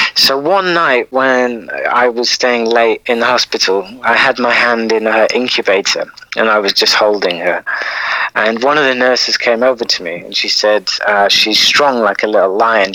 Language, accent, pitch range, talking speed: English, British, 110-140 Hz, 200 wpm